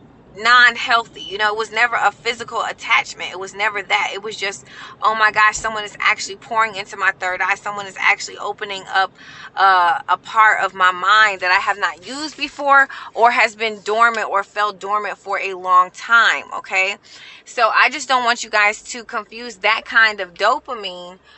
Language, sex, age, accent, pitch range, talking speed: English, female, 20-39, American, 190-225 Hz, 195 wpm